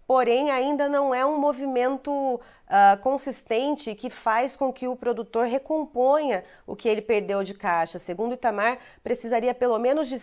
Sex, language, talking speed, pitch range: female, Portuguese, 160 wpm, 200-245 Hz